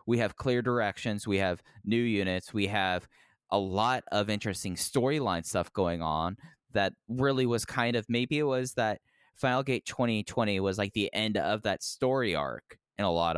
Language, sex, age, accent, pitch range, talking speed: English, male, 20-39, American, 95-120 Hz, 185 wpm